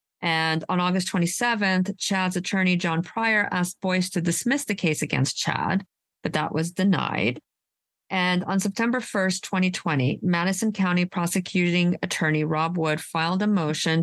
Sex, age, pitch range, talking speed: female, 40-59, 160-195 Hz, 145 wpm